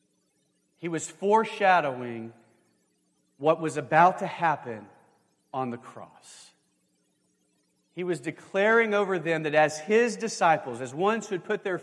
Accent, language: American, English